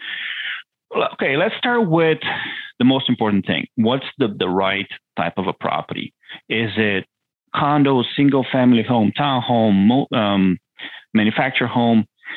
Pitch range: 100-150 Hz